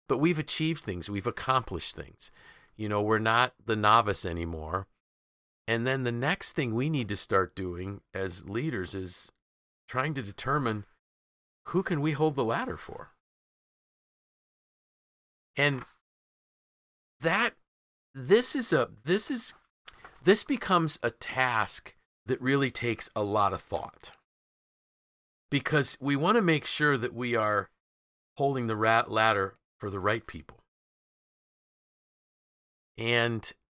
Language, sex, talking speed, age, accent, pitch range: English, male, 130 wpm, 50-69, American, 100-140 Hz